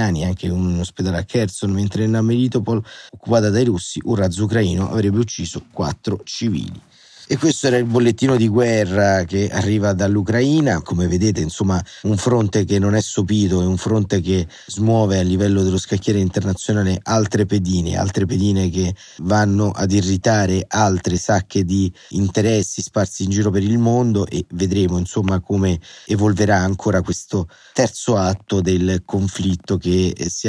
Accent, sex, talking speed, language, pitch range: native, male, 155 wpm, Italian, 90-105 Hz